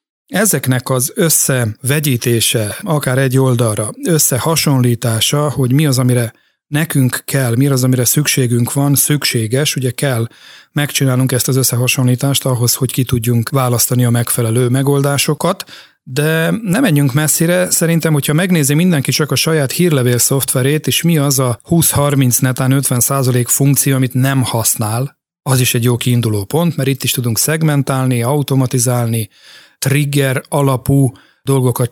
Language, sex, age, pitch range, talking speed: Hungarian, male, 40-59, 125-145 Hz, 135 wpm